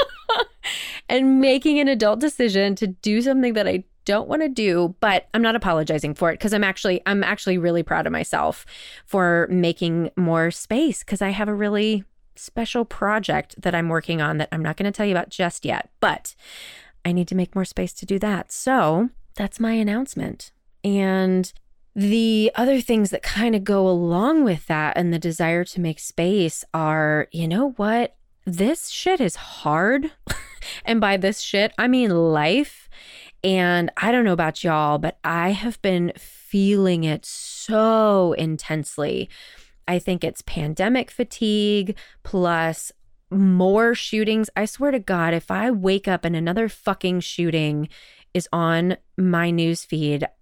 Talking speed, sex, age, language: 165 wpm, female, 30-49, English